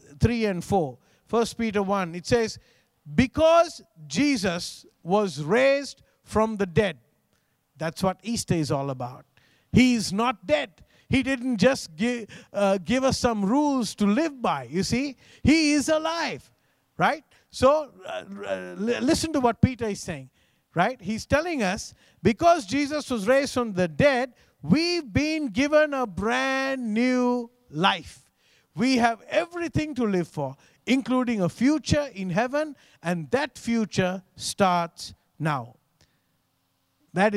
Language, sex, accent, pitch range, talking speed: English, male, Indian, 160-250 Hz, 140 wpm